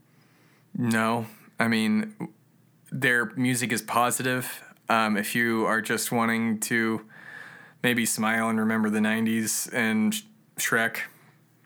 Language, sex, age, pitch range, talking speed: English, male, 20-39, 105-140 Hz, 115 wpm